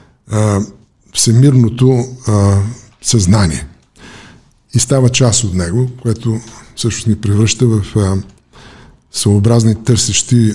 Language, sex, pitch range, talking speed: Bulgarian, male, 100-120 Hz, 90 wpm